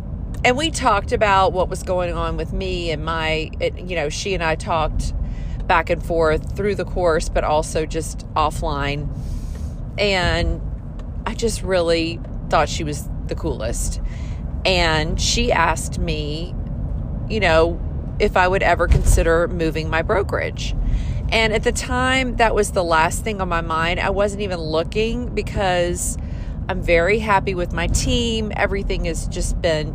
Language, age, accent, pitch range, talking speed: English, 40-59, American, 150-195 Hz, 155 wpm